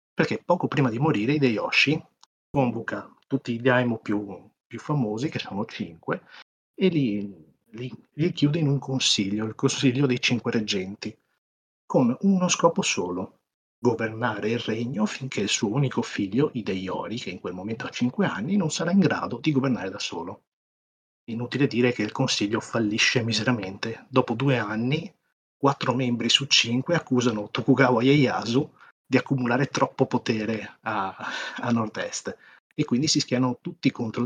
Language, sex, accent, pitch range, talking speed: Italian, male, native, 115-150 Hz, 150 wpm